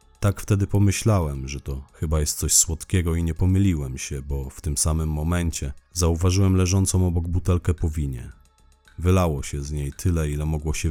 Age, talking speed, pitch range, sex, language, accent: 40-59, 175 wpm, 75-85 Hz, male, Polish, native